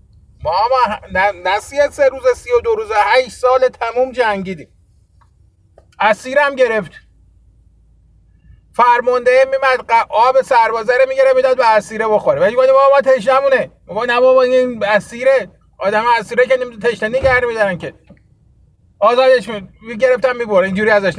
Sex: male